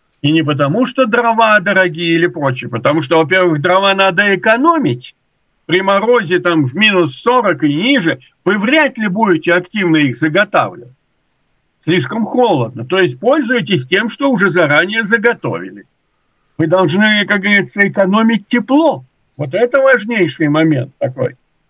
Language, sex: Russian, male